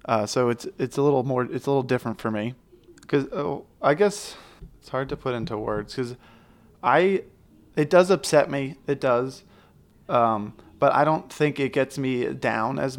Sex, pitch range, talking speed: male, 115-145 Hz, 190 wpm